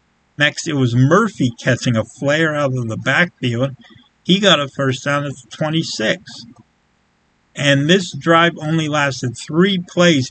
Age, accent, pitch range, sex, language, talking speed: 50-69, American, 125-155 Hz, male, English, 150 wpm